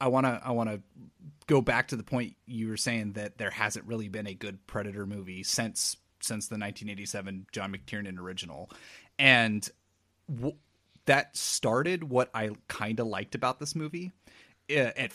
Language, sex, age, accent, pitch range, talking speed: English, male, 30-49, American, 100-125 Hz, 175 wpm